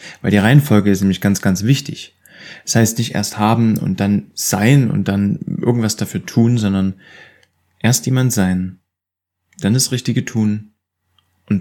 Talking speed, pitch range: 155 wpm, 95-125 Hz